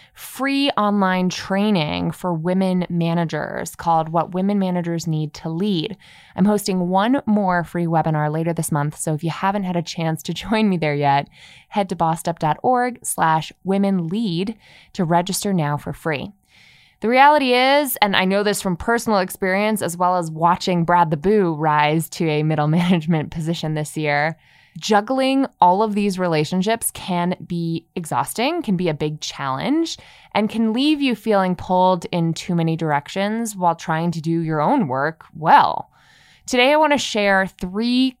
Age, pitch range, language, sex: 20-39, 160-210 Hz, English, female